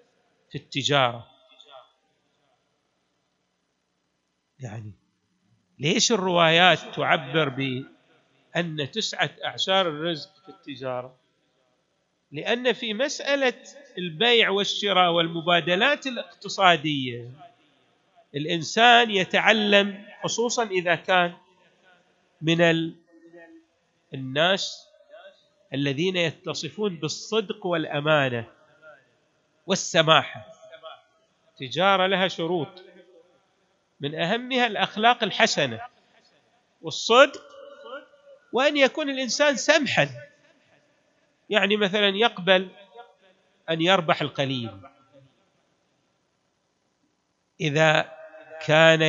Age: 50-69